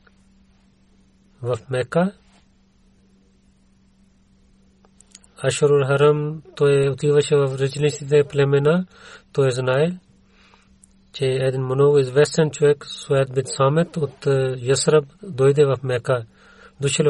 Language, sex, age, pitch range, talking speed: Bulgarian, male, 40-59, 125-150 Hz, 90 wpm